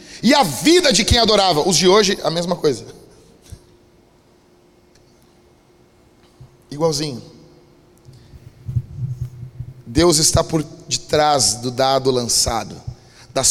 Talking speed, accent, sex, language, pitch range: 95 wpm, Brazilian, male, Portuguese, 145-205 Hz